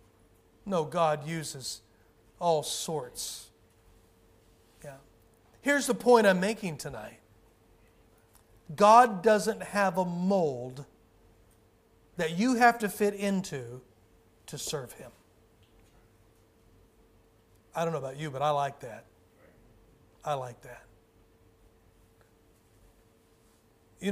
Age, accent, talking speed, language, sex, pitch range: 40-59, American, 95 wpm, English, male, 110-175 Hz